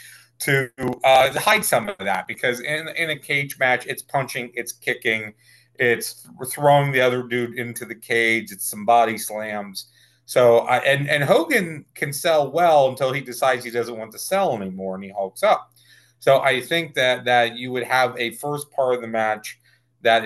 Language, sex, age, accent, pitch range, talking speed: English, male, 30-49, American, 115-140 Hz, 190 wpm